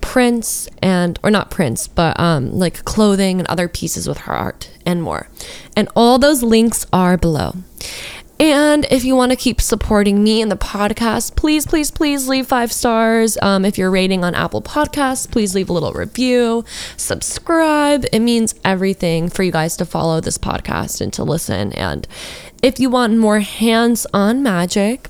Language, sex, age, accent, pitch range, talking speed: English, female, 10-29, American, 180-235 Hz, 175 wpm